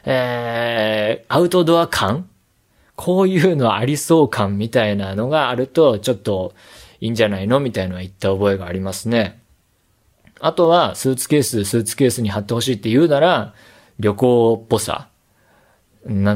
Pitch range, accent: 105-170 Hz, native